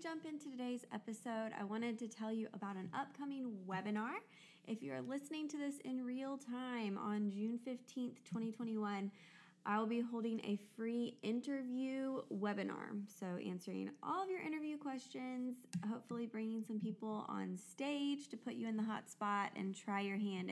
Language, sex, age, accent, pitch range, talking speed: English, female, 20-39, American, 195-250 Hz, 165 wpm